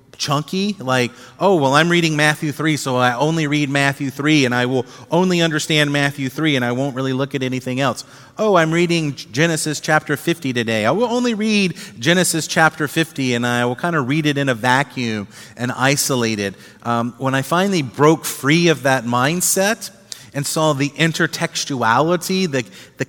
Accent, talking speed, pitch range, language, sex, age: American, 185 wpm, 125-175 Hz, English, male, 30-49